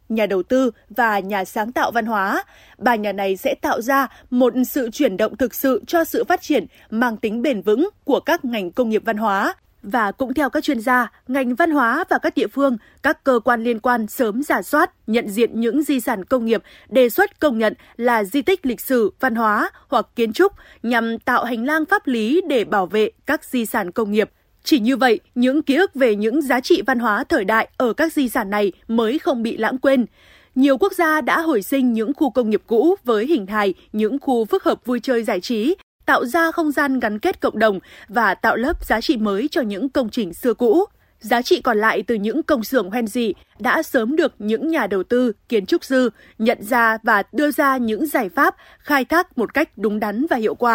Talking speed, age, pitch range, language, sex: 230 wpm, 20-39, 225-300 Hz, Vietnamese, female